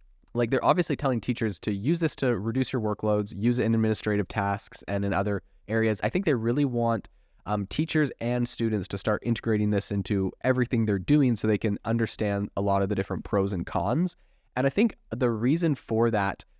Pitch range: 100-120 Hz